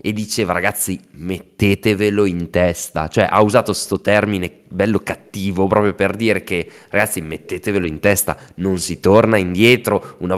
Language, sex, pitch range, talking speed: Italian, male, 95-115 Hz, 150 wpm